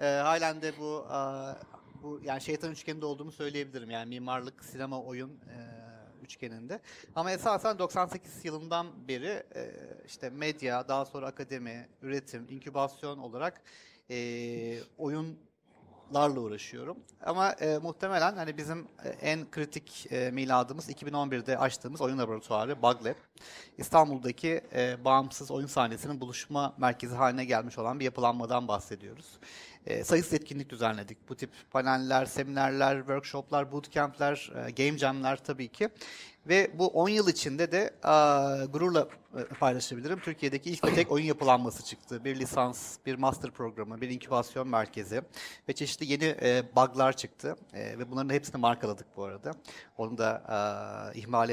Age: 40-59